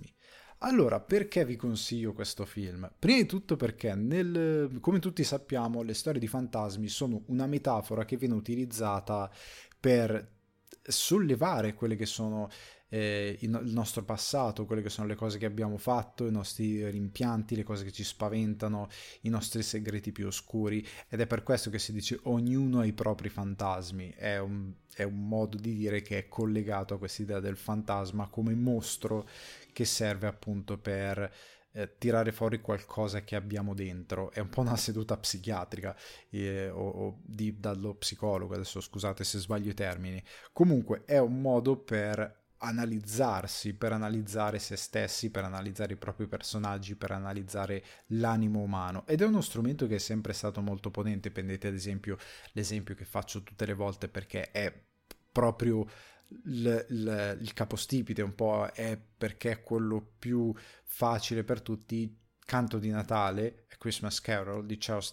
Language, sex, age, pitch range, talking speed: Italian, male, 20-39, 100-115 Hz, 155 wpm